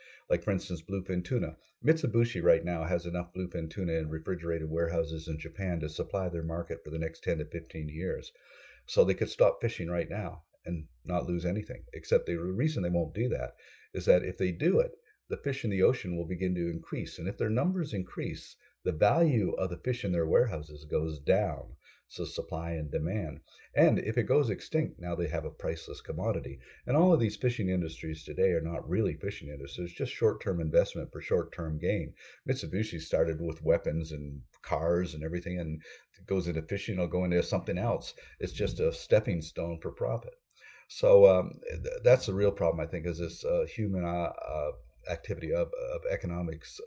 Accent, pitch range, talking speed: American, 85-110 Hz, 195 wpm